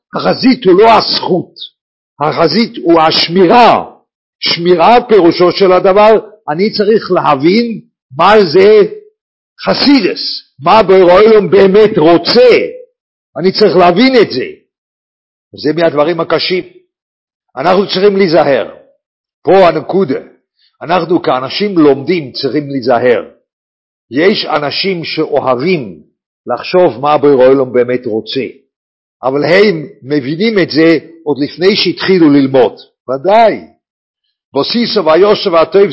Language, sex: English, male